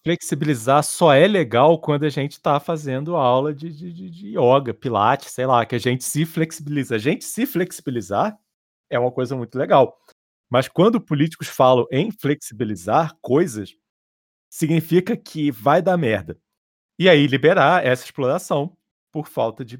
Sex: male